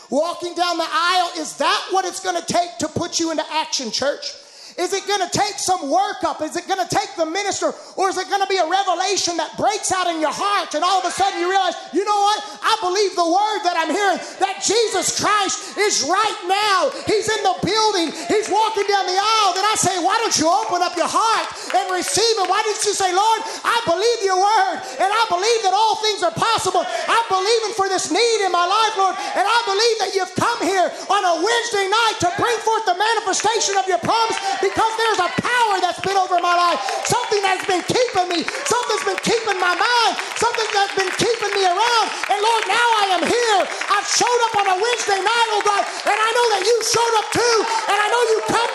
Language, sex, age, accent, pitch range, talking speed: English, male, 30-49, American, 365-435 Hz, 235 wpm